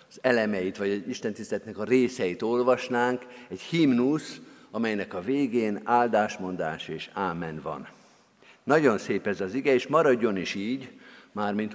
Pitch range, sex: 100-130 Hz, male